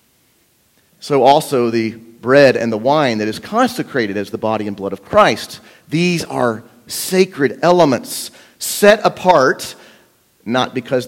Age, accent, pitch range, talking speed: 40-59, American, 120-185 Hz, 135 wpm